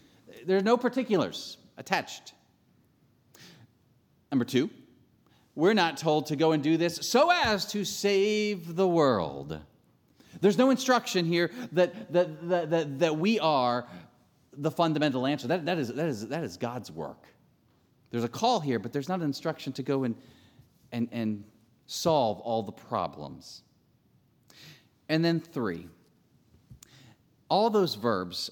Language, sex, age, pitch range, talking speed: English, male, 40-59, 115-165 Hz, 145 wpm